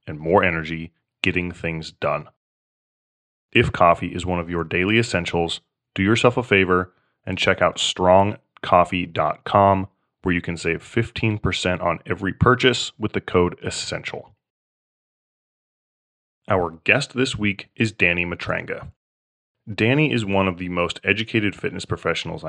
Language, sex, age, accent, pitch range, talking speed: English, male, 20-39, American, 85-100 Hz, 135 wpm